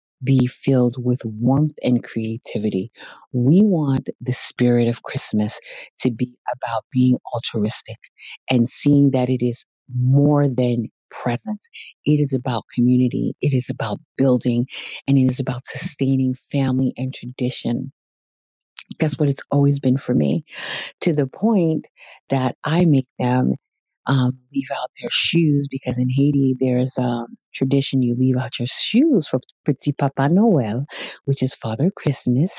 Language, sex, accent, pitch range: English, female, American, 125-145 Hz